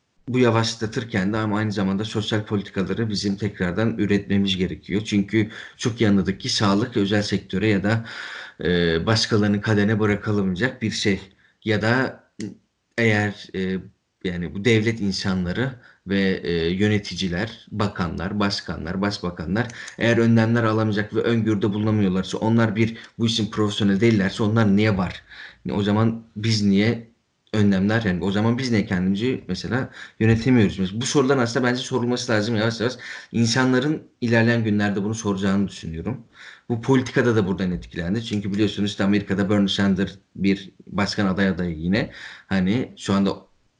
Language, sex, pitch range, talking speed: Turkish, male, 100-115 Hz, 140 wpm